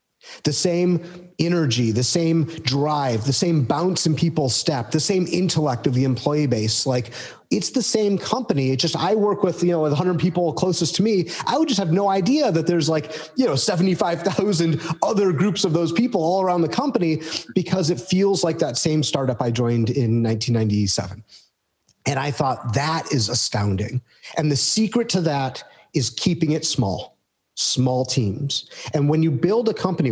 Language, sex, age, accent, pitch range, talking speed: English, male, 30-49, American, 125-175 Hz, 180 wpm